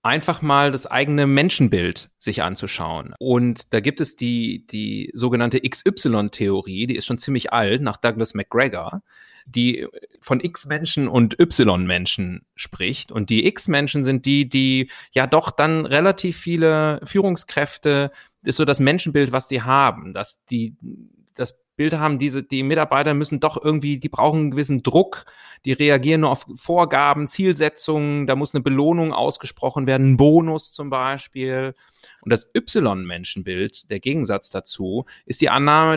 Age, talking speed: 30-49, 150 wpm